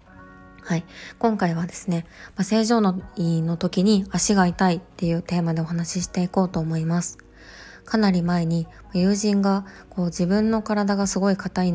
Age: 20-39